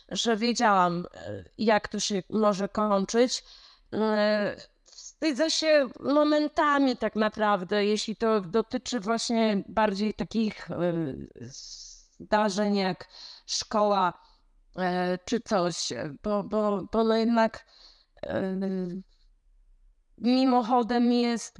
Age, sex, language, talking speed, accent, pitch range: 30-49, female, Polish, 80 wpm, native, 175-220 Hz